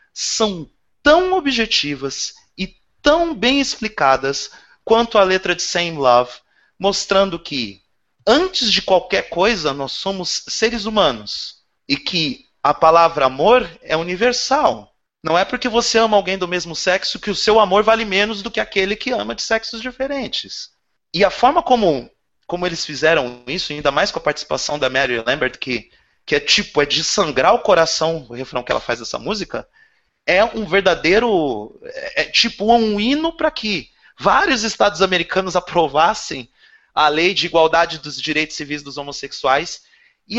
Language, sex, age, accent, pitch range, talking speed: Portuguese, male, 30-49, Brazilian, 155-235 Hz, 160 wpm